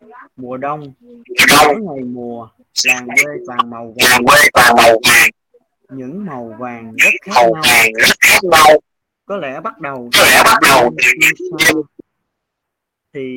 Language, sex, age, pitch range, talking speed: Vietnamese, male, 20-39, 125-190 Hz, 110 wpm